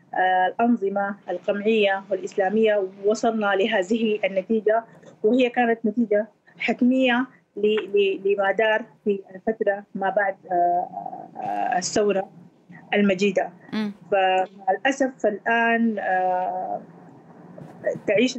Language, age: Arabic, 30-49